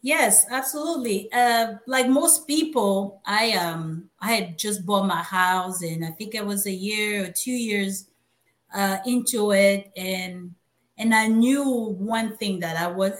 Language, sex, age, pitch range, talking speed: English, female, 30-49, 185-225 Hz, 165 wpm